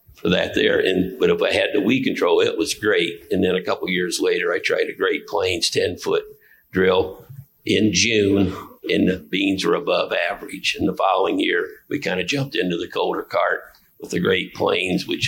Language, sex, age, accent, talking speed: English, male, 50-69, American, 210 wpm